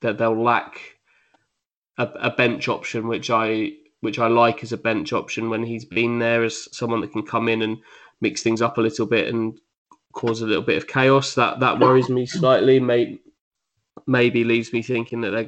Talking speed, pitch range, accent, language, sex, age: 200 wpm, 115-130 Hz, British, English, male, 20-39